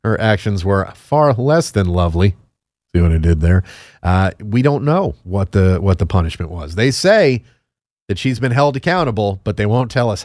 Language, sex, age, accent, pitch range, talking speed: English, male, 30-49, American, 100-130 Hz, 200 wpm